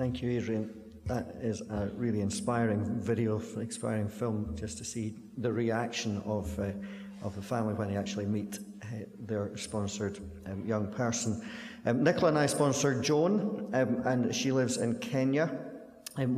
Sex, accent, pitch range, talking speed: male, British, 105-125 Hz, 165 wpm